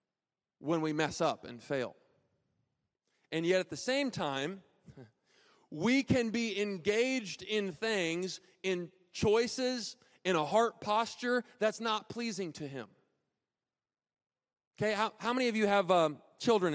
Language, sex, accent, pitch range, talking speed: English, male, American, 165-220 Hz, 135 wpm